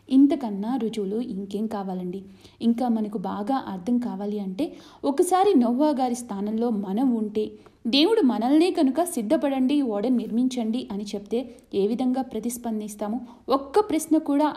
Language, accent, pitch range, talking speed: Telugu, native, 210-290 Hz, 125 wpm